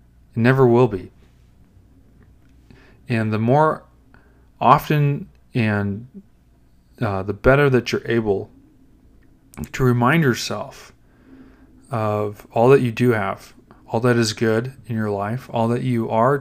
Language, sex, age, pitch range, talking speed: English, male, 30-49, 105-130 Hz, 130 wpm